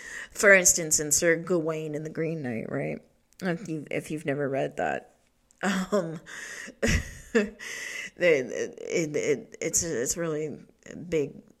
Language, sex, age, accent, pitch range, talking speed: English, female, 30-49, American, 170-255 Hz, 130 wpm